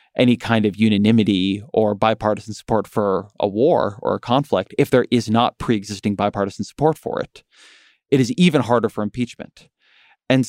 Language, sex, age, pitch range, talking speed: English, male, 20-39, 105-120 Hz, 165 wpm